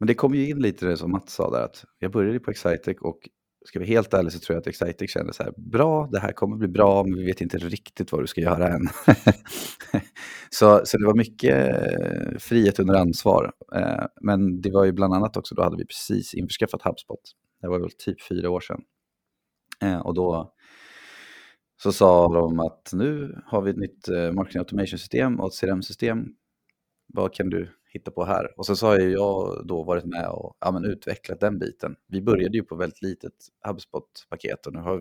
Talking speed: 205 wpm